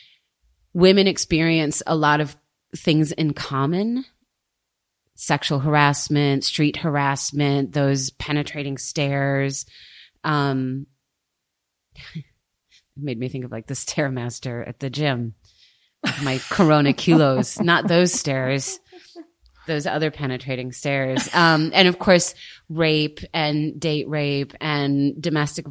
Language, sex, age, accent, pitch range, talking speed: English, female, 30-49, American, 140-175 Hz, 105 wpm